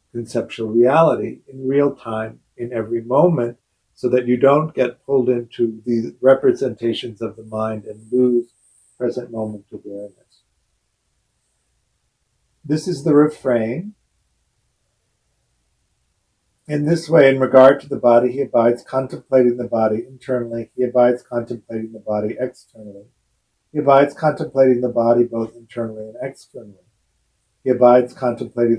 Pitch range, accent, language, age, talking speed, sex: 110-130 Hz, American, English, 50-69, 125 wpm, male